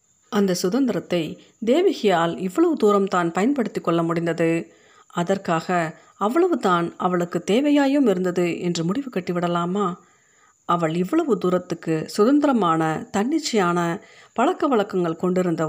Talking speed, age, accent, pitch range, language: 95 wpm, 50-69, native, 170-225 Hz, Tamil